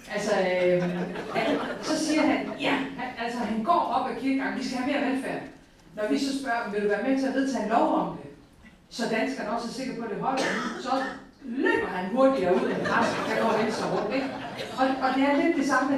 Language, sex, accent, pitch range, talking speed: Danish, female, native, 200-265 Hz, 230 wpm